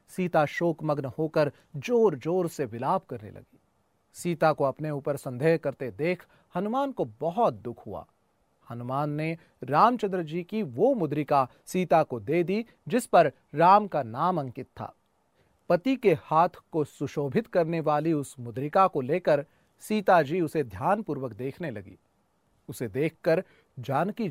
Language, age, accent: Hindi, 40-59, native